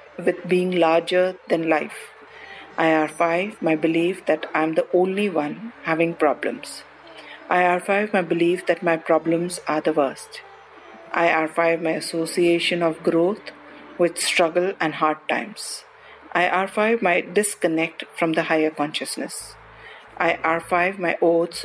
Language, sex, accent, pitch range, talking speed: English, female, Indian, 160-185 Hz, 140 wpm